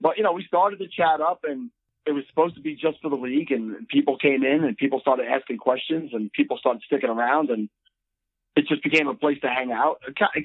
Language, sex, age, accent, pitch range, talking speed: English, male, 40-59, American, 130-155 Hz, 240 wpm